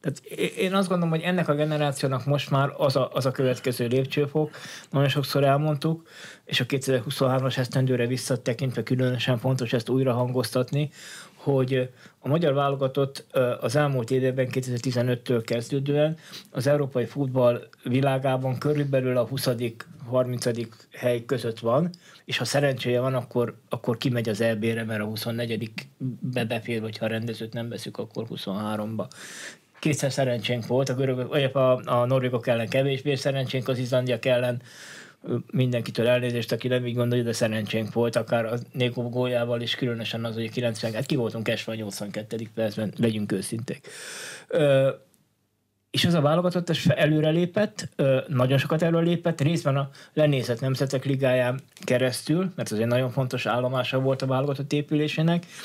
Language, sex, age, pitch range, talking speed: Hungarian, male, 20-39, 120-140 Hz, 145 wpm